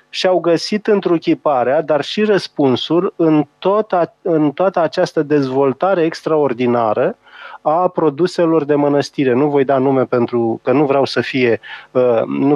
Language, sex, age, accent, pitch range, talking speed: Romanian, male, 30-49, native, 130-170 Hz, 145 wpm